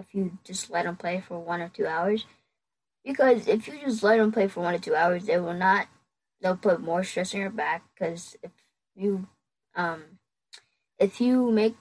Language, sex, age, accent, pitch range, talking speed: English, female, 10-29, American, 175-225 Hz, 205 wpm